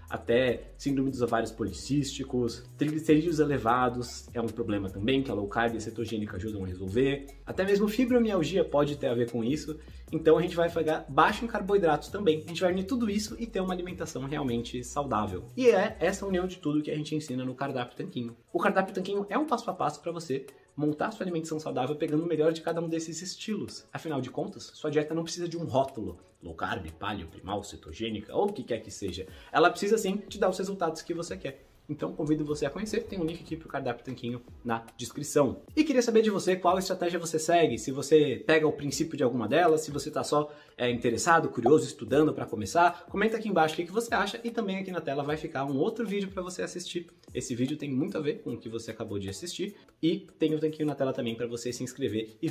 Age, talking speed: 20-39, 235 wpm